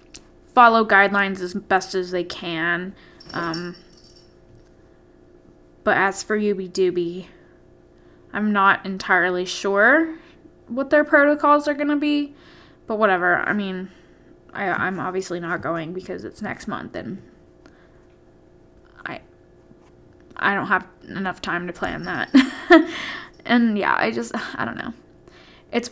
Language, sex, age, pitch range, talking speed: English, female, 10-29, 190-260 Hz, 125 wpm